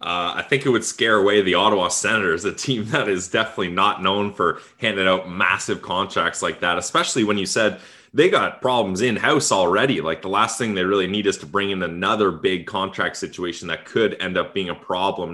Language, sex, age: English, male, 20-39